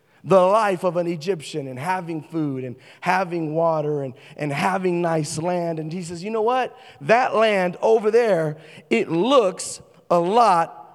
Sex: male